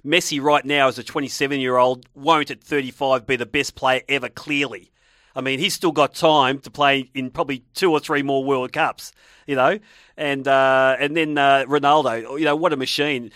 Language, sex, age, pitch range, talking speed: English, male, 40-59, 135-160 Hz, 200 wpm